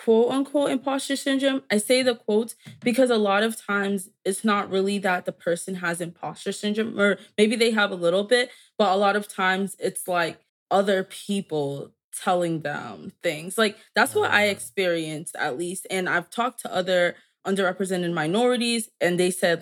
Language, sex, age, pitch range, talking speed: English, female, 20-39, 175-210 Hz, 175 wpm